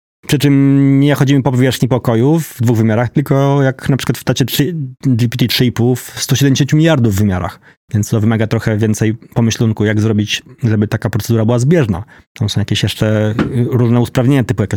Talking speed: 170 wpm